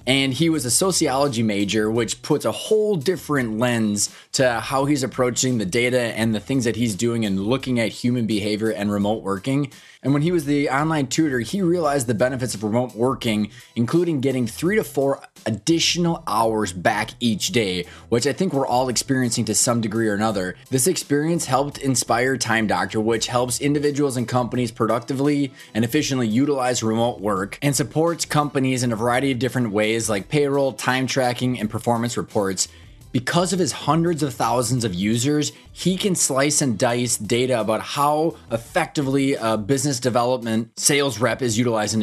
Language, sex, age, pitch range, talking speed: English, male, 20-39, 110-140 Hz, 175 wpm